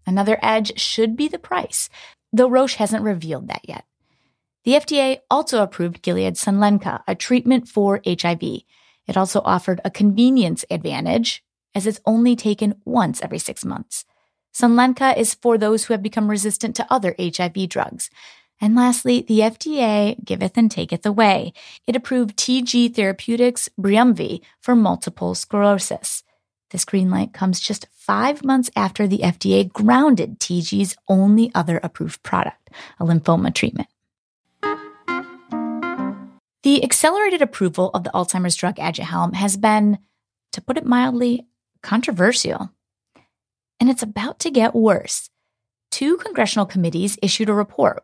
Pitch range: 185-240 Hz